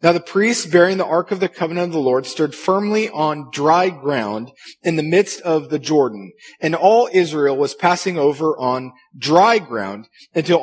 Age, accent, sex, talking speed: 40-59, American, male, 185 wpm